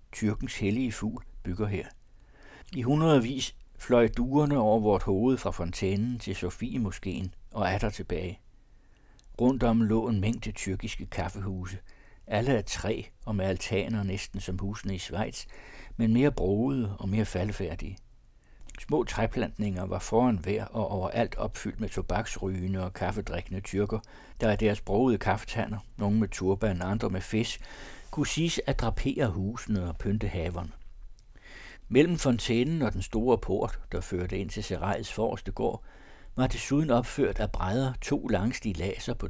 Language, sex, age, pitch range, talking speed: Danish, male, 60-79, 95-115 Hz, 145 wpm